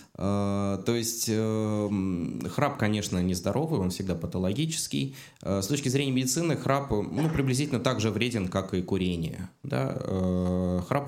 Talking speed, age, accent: 120 wpm, 20-39, native